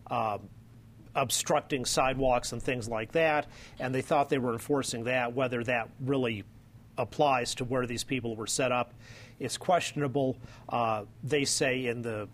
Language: English